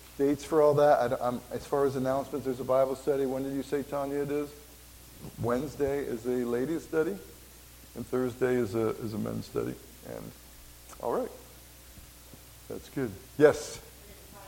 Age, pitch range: 50-69, 110-150 Hz